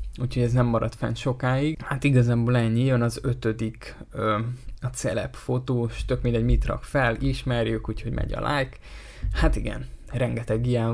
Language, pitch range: Hungarian, 115-125 Hz